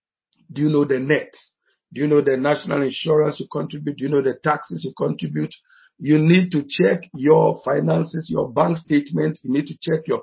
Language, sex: English, male